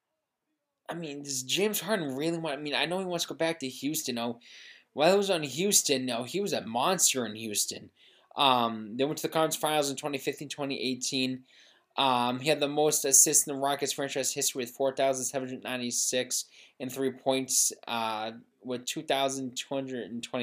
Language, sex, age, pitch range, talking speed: English, male, 20-39, 130-160 Hz, 205 wpm